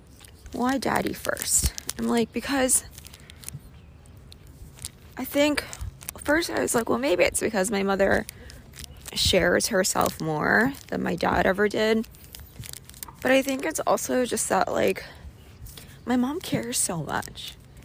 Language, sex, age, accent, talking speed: English, female, 20-39, American, 130 wpm